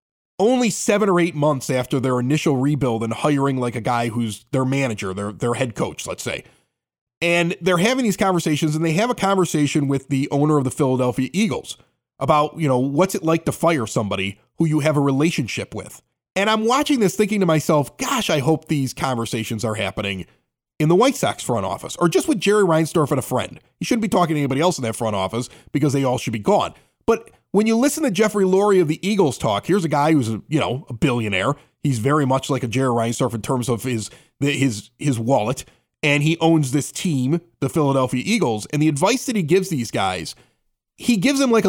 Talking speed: 220 wpm